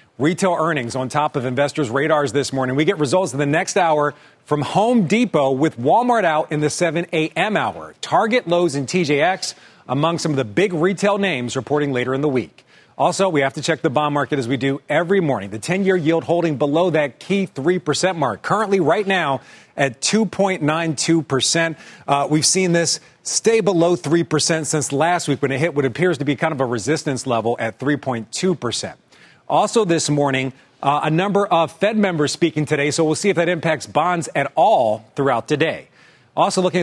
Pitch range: 140-180 Hz